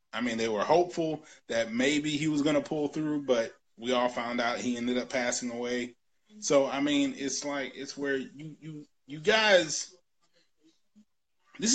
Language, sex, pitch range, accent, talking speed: English, male, 140-205 Hz, American, 180 wpm